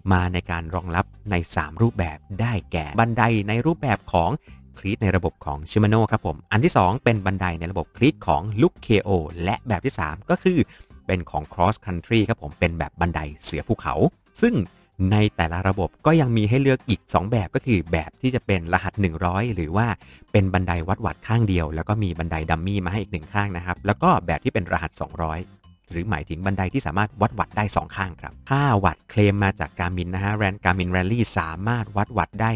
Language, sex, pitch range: Thai, male, 85-110 Hz